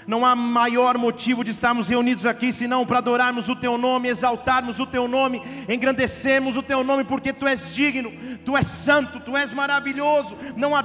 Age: 40-59